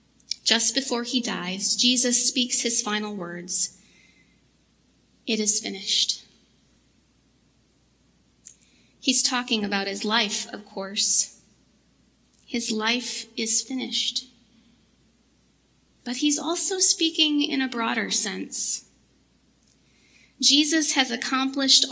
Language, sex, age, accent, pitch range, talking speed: English, female, 30-49, American, 225-265 Hz, 95 wpm